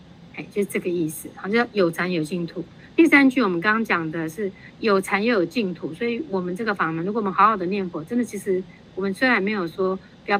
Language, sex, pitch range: Chinese, female, 170-205 Hz